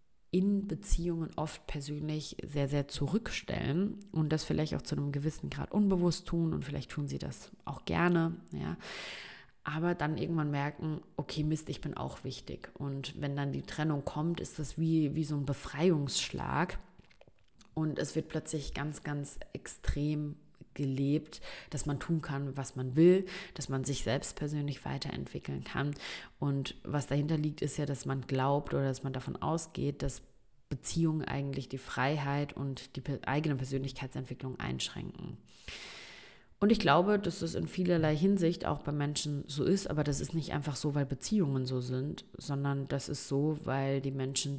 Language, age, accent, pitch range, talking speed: German, 30-49, German, 135-160 Hz, 165 wpm